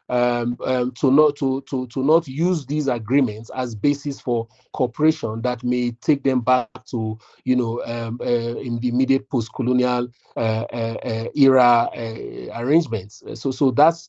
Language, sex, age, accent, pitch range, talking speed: English, male, 40-59, Nigerian, 115-125 Hz, 160 wpm